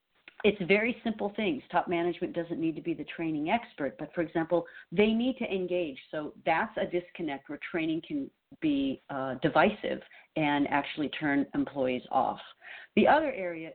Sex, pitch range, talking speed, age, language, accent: female, 160-225 Hz, 165 wpm, 50-69, English, American